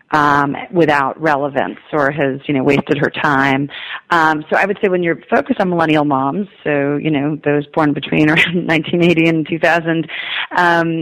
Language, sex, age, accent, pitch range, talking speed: English, female, 30-49, American, 145-170 Hz, 185 wpm